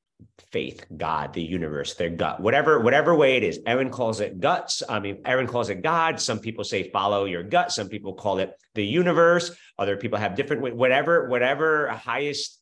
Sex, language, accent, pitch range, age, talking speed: male, English, American, 100-165 Hz, 30-49, 190 wpm